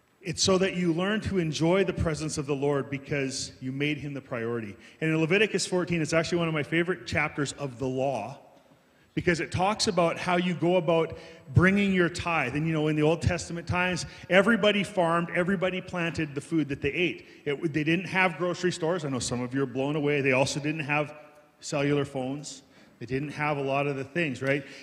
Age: 30-49